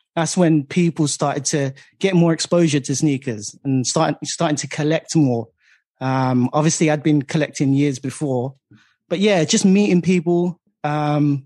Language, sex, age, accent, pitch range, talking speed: English, male, 20-39, British, 140-170 Hz, 150 wpm